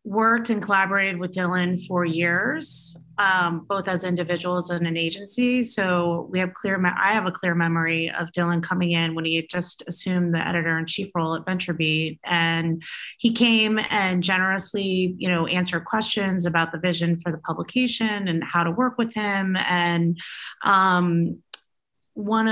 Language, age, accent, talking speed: English, 30-49, American, 170 wpm